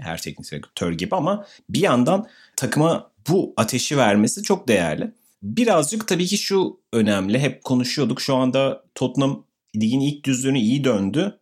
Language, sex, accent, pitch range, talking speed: Turkish, male, native, 100-135 Hz, 145 wpm